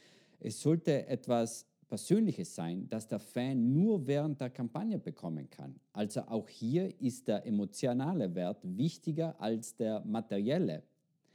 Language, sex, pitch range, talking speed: German, male, 110-155 Hz, 130 wpm